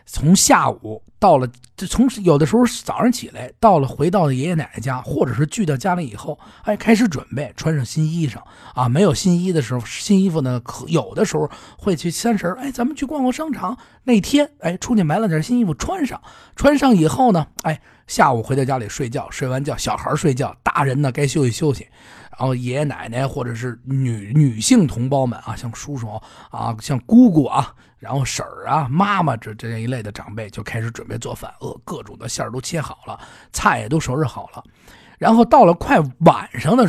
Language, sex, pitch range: Chinese, male, 125-195 Hz